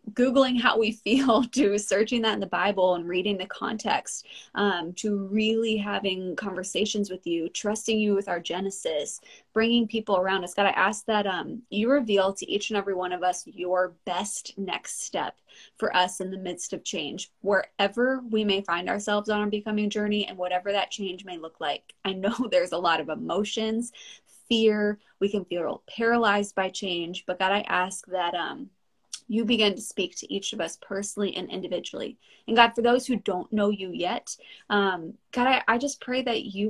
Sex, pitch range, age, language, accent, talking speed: female, 185-225 Hz, 20-39, English, American, 195 wpm